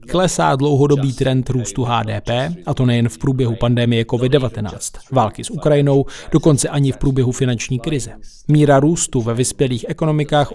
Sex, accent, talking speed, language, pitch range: male, native, 150 wpm, Czech, 120-150 Hz